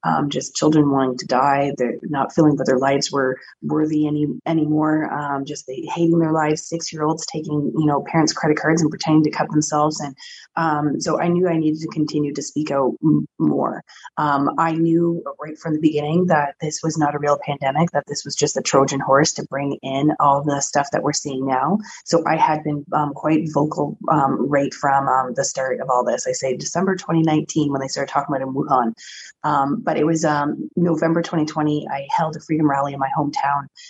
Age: 30-49